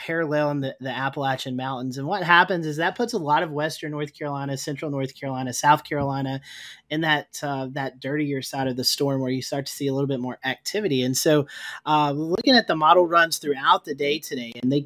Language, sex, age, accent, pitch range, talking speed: English, male, 30-49, American, 140-170 Hz, 225 wpm